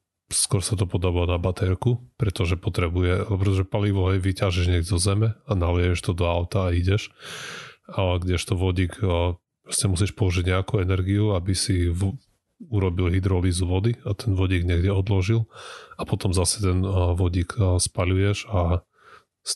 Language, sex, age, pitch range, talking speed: Slovak, male, 30-49, 90-100 Hz, 145 wpm